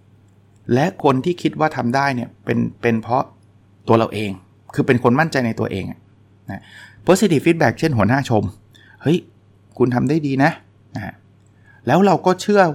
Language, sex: Thai, male